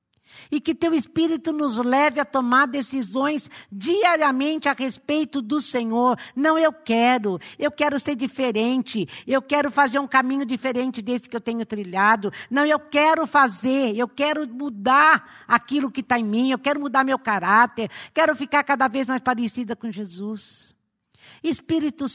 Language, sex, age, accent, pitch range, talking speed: Portuguese, female, 60-79, Brazilian, 210-285 Hz, 155 wpm